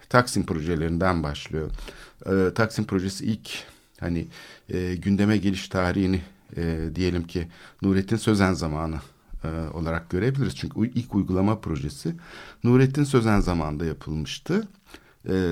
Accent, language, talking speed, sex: native, Turkish, 120 wpm, male